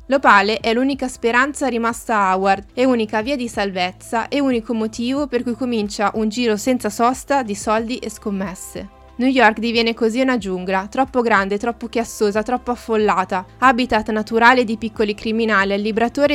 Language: Italian